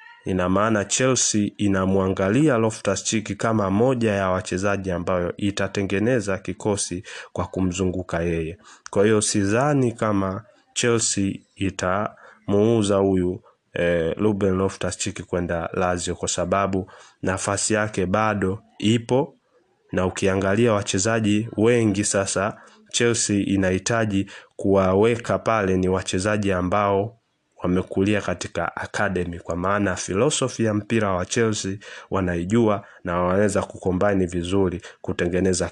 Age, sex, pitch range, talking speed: 30-49, male, 95-115 Hz, 105 wpm